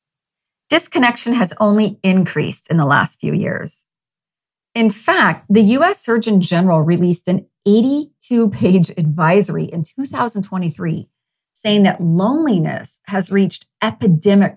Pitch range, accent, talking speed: 165-215 Hz, American, 110 wpm